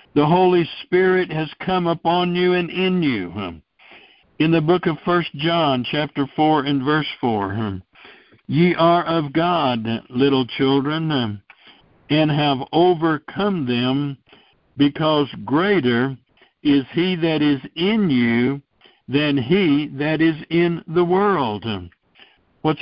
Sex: male